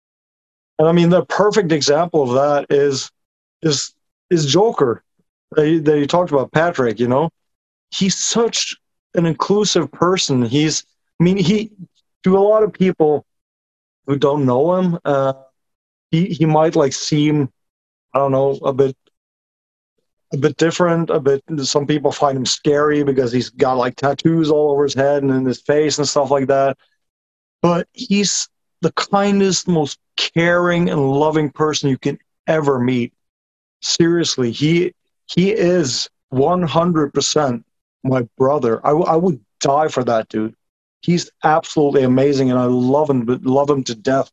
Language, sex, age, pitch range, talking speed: English, male, 30-49, 130-165 Hz, 160 wpm